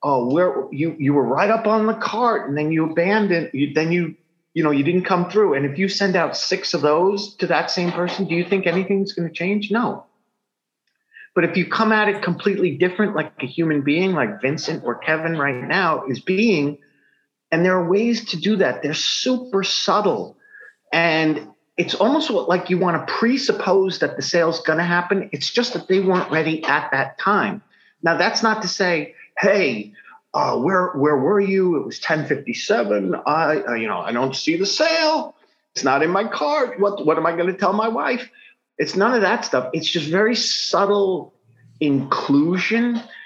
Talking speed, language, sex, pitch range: 200 wpm, English, male, 155-210 Hz